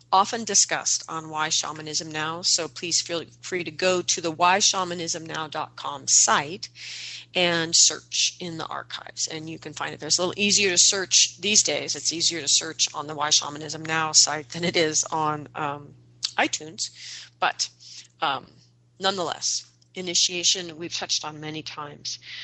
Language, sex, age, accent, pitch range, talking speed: English, female, 40-59, American, 145-185 Hz, 165 wpm